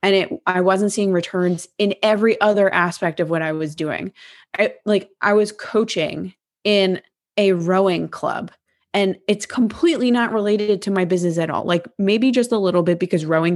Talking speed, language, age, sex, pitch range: 185 wpm, English, 20-39, female, 175-205 Hz